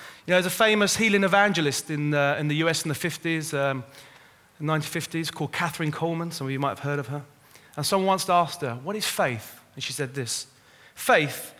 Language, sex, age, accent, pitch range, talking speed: English, male, 30-49, British, 140-190 Hz, 210 wpm